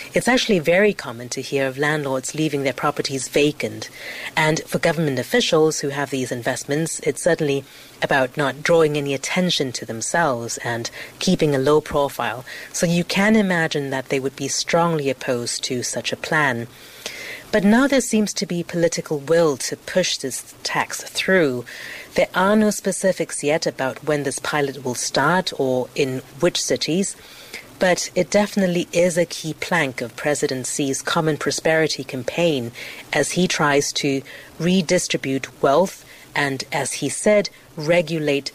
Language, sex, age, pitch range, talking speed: English, female, 30-49, 135-175 Hz, 155 wpm